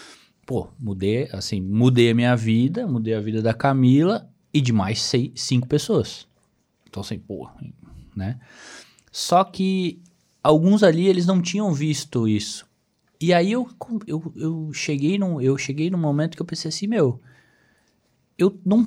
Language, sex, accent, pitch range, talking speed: Portuguese, male, Brazilian, 120-180 Hz, 155 wpm